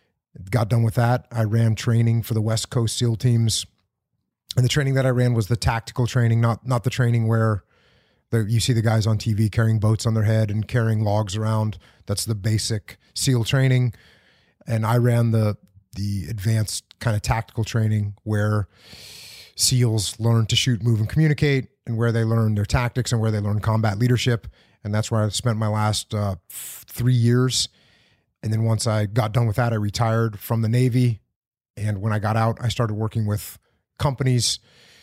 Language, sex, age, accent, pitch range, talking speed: English, male, 30-49, American, 110-125 Hz, 195 wpm